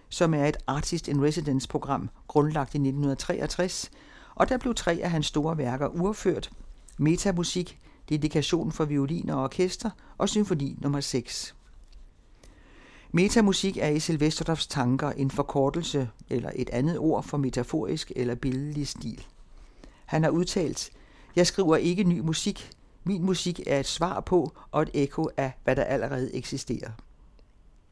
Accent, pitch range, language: native, 140-180 Hz, Danish